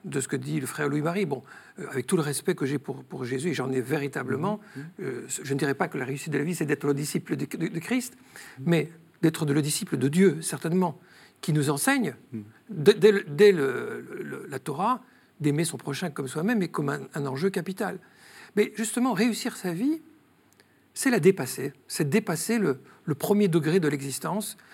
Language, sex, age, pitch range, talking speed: French, male, 50-69, 150-200 Hz, 215 wpm